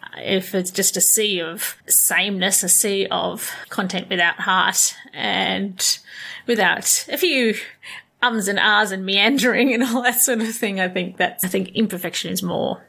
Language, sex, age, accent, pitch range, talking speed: English, female, 30-49, Australian, 185-230 Hz, 170 wpm